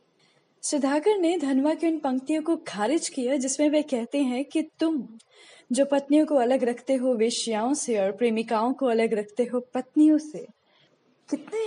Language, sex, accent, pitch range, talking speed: Hindi, female, native, 225-310 Hz, 165 wpm